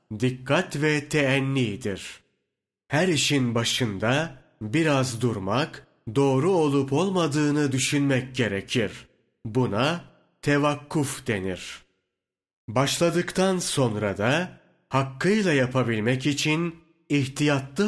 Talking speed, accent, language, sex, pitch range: 75 wpm, native, Turkish, male, 115-150 Hz